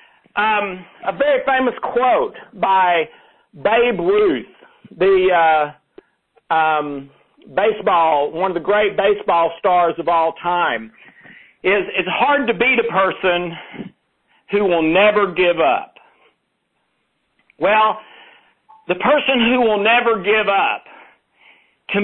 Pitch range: 190-260 Hz